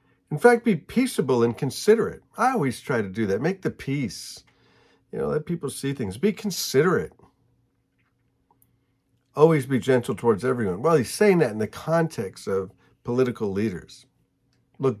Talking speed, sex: 155 wpm, male